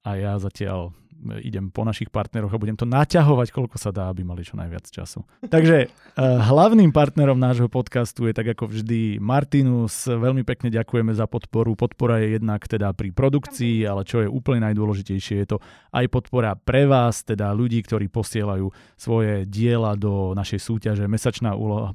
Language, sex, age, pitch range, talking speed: Slovak, male, 30-49, 100-120 Hz, 170 wpm